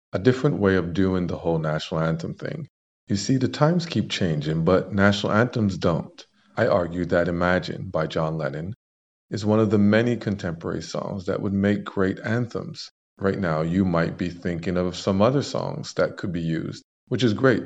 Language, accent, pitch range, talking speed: English, American, 85-105 Hz, 190 wpm